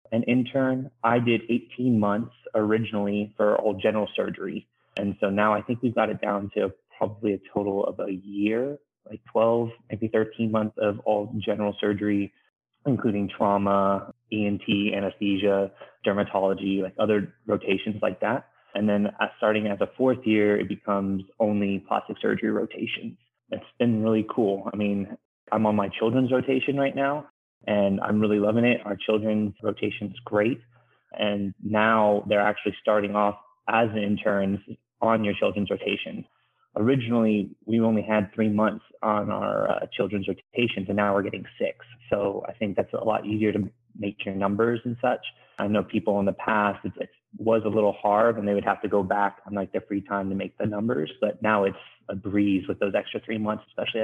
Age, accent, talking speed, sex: 20-39, American, 180 wpm, male